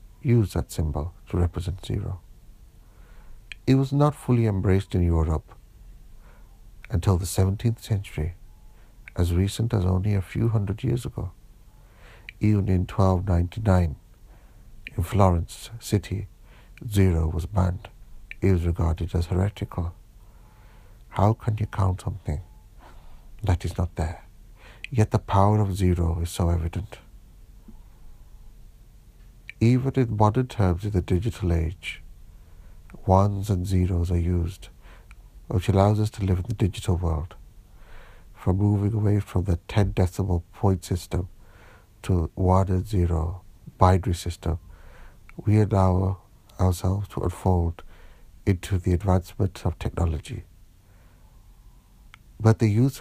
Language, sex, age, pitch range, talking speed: English, male, 60-79, 90-110 Hz, 120 wpm